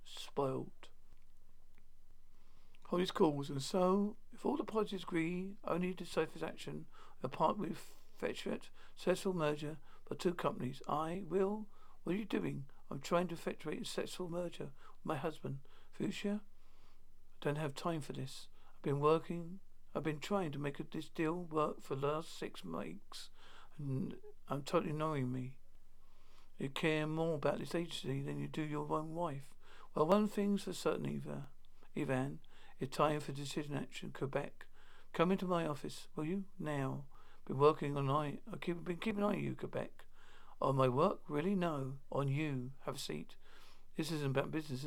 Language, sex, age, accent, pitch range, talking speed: English, male, 50-69, British, 130-175 Hz, 170 wpm